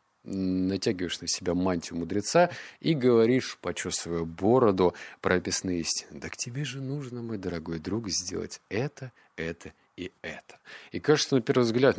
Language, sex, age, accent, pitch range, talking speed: Russian, male, 30-49, native, 90-130 Hz, 145 wpm